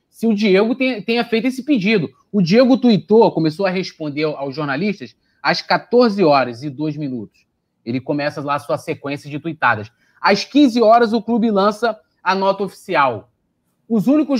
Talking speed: 165 wpm